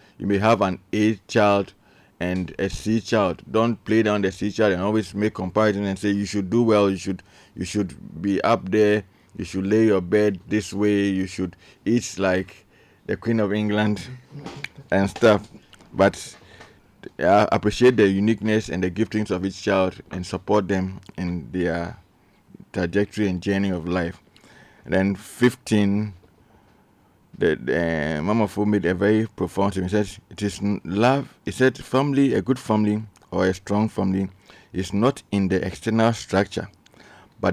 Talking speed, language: 165 wpm, English